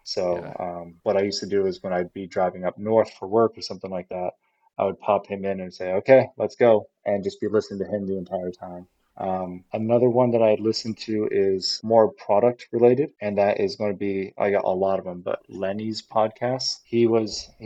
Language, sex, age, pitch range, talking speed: English, male, 20-39, 95-110 Hz, 230 wpm